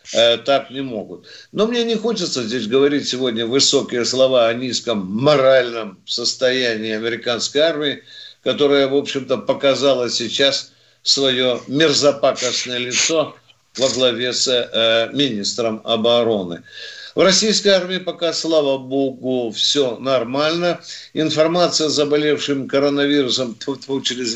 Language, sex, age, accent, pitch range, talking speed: Russian, male, 50-69, native, 130-175 Hz, 110 wpm